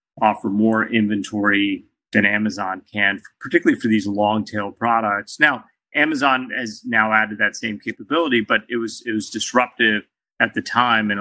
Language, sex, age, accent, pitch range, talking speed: English, male, 30-49, American, 105-115 Hz, 155 wpm